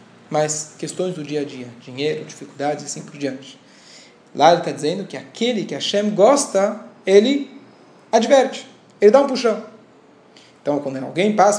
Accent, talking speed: Brazilian, 160 wpm